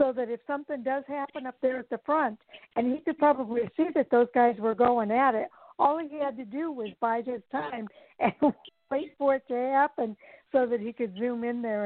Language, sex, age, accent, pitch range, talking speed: English, female, 60-79, American, 210-265 Hz, 230 wpm